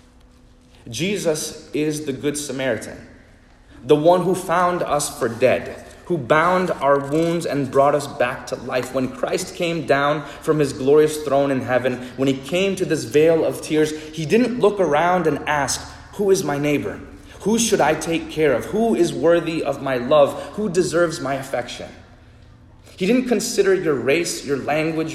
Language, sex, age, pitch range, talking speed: English, male, 30-49, 125-160 Hz, 175 wpm